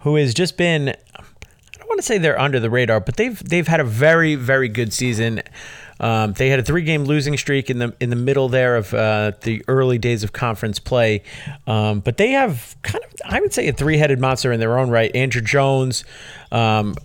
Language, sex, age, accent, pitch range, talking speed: English, male, 30-49, American, 110-135 Hz, 220 wpm